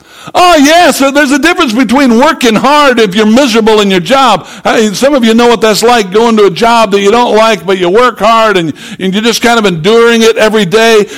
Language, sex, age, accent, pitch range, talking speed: English, male, 60-79, American, 175-220 Hz, 225 wpm